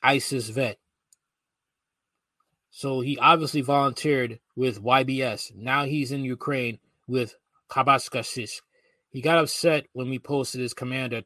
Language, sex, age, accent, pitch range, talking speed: English, male, 20-39, American, 115-145 Hz, 110 wpm